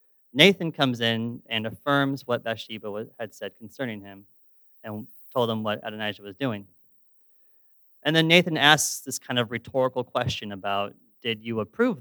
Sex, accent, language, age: male, American, English, 30-49